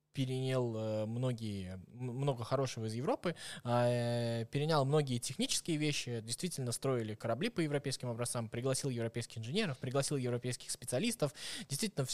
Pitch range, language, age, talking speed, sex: 125-170 Hz, Russian, 20-39, 115 wpm, male